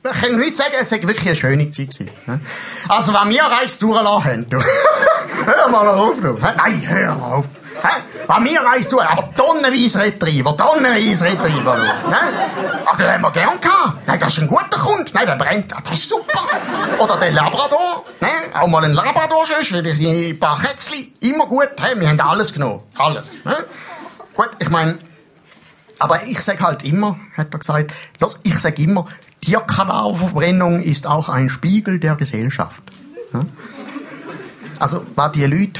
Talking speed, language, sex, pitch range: 160 wpm, German, male, 140-210 Hz